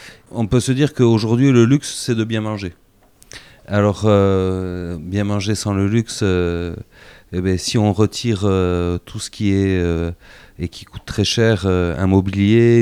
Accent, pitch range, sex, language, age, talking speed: French, 95-115 Hz, male, English, 30-49, 180 wpm